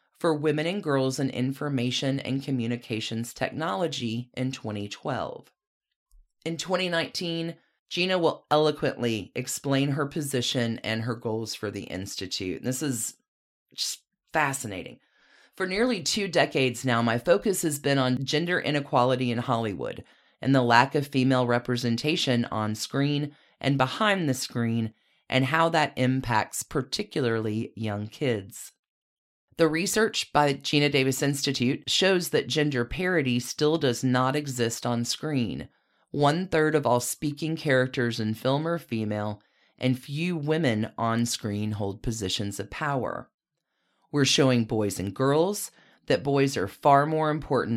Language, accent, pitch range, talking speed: English, American, 115-150 Hz, 135 wpm